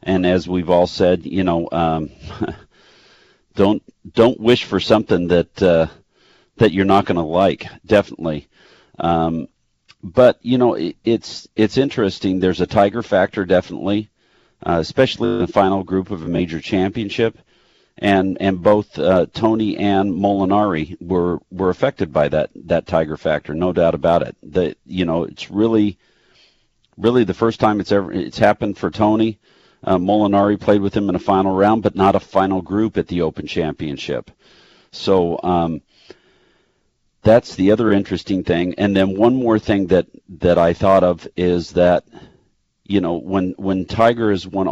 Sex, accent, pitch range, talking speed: male, American, 85-100 Hz, 165 wpm